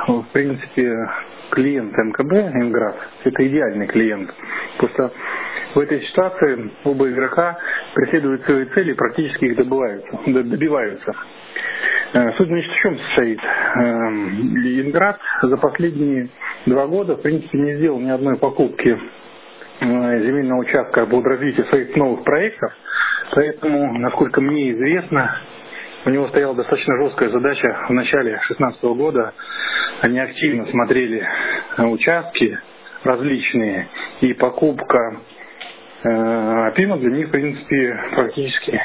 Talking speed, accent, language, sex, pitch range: 110 wpm, native, Russian, male, 125-150 Hz